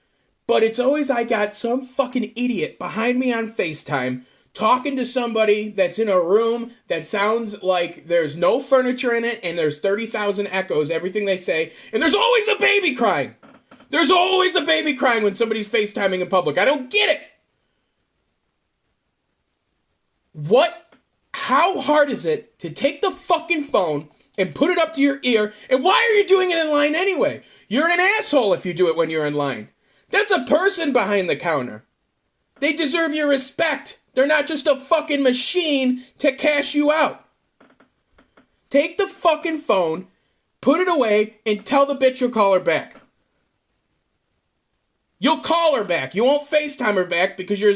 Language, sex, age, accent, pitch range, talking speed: English, male, 30-49, American, 200-310 Hz, 170 wpm